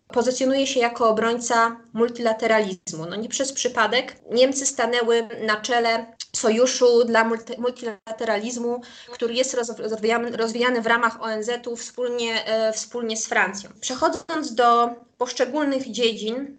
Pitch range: 230-260 Hz